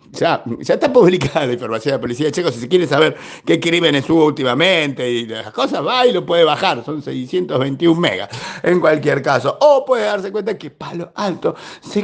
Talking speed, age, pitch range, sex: 200 wpm, 50-69, 140-210 Hz, male